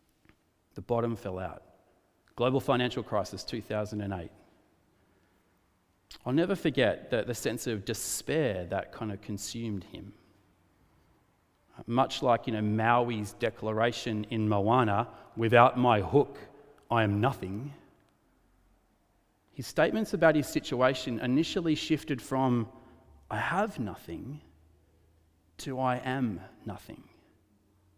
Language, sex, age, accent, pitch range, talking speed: English, male, 30-49, Australian, 100-130 Hz, 105 wpm